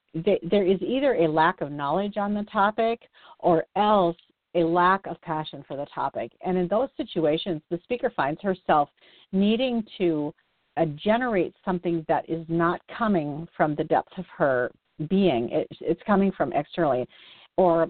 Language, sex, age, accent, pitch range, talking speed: English, female, 50-69, American, 160-200 Hz, 165 wpm